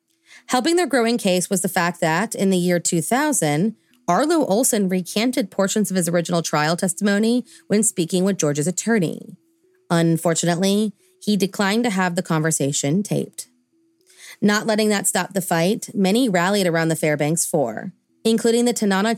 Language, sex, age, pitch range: English, female, 30-49, 165-220 Hz